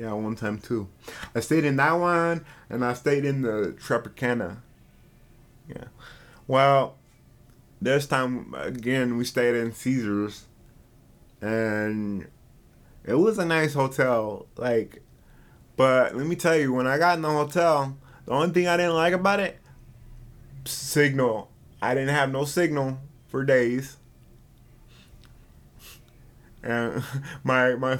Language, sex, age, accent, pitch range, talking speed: English, male, 20-39, American, 120-145 Hz, 130 wpm